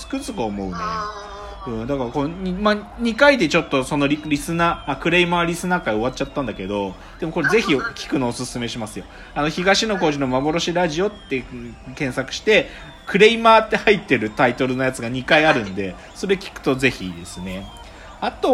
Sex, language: male, Japanese